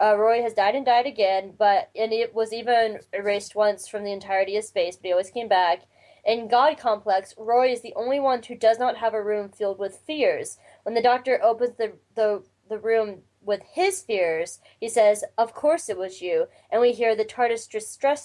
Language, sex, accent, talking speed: English, female, American, 215 wpm